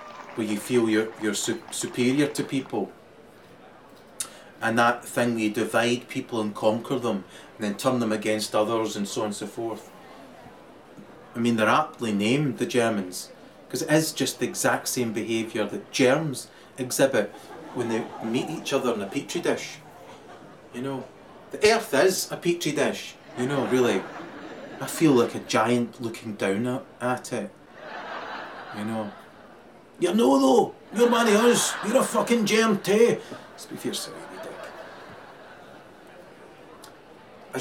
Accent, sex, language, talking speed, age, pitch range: British, male, English, 155 wpm, 30-49, 115-145 Hz